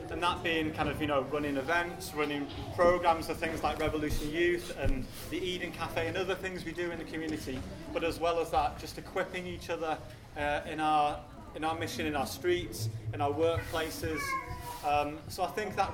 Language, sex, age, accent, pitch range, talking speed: English, male, 30-49, British, 120-170 Hz, 205 wpm